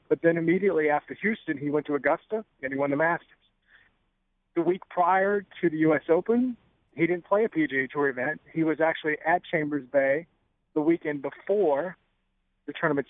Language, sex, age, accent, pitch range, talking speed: English, male, 50-69, American, 145-180 Hz, 180 wpm